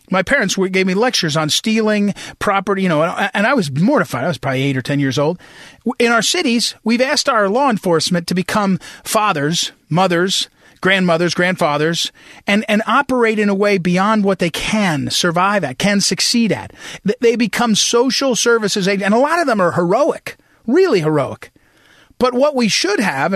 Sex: male